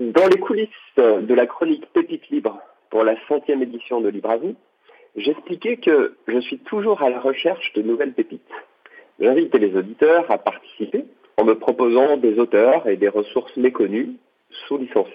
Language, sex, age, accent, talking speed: French, male, 40-59, French, 160 wpm